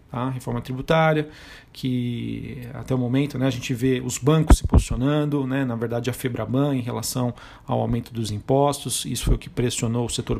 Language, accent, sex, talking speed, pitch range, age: Portuguese, Brazilian, male, 190 wpm, 130-145 Hz, 40-59